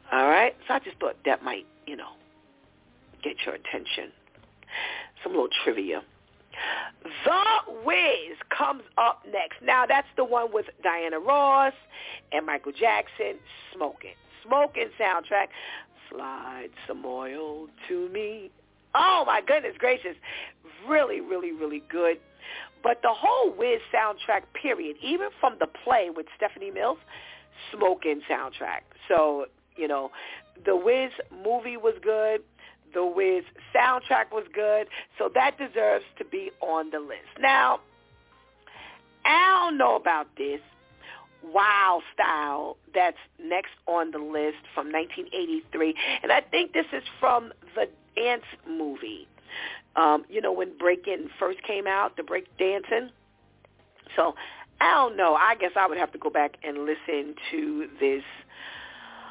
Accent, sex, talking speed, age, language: American, female, 135 wpm, 50-69, English